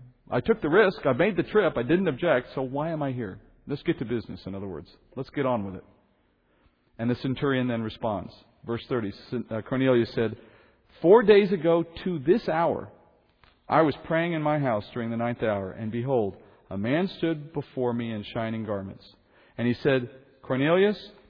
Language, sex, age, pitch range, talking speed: English, male, 40-59, 115-155 Hz, 190 wpm